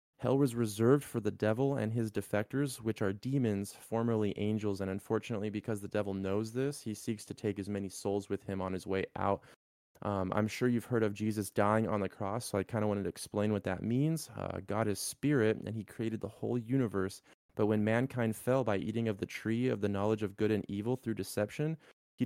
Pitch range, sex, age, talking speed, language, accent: 100-120 Hz, male, 20-39, 225 wpm, English, American